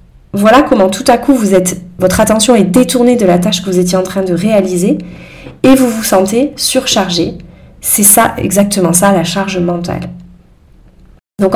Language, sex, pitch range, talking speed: French, female, 190-255 Hz, 175 wpm